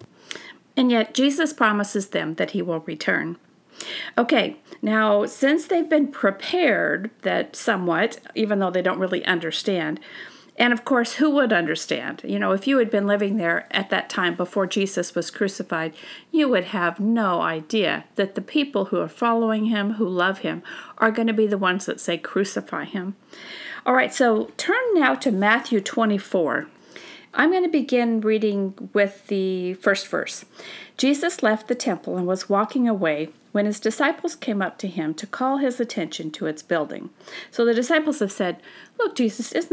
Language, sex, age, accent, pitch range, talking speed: English, female, 50-69, American, 185-255 Hz, 175 wpm